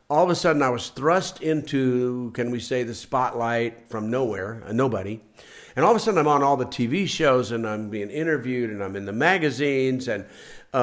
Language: English